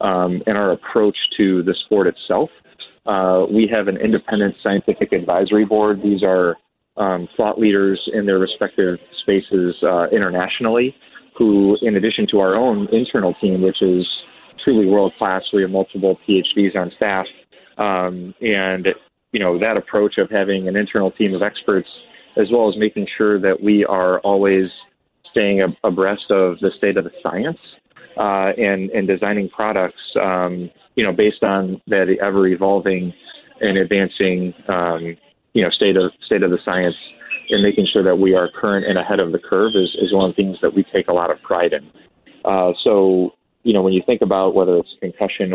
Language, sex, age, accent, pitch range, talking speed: English, male, 30-49, American, 90-100 Hz, 180 wpm